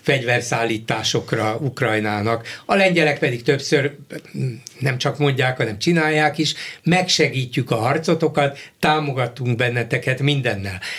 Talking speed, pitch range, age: 100 wpm, 130-160 Hz, 60-79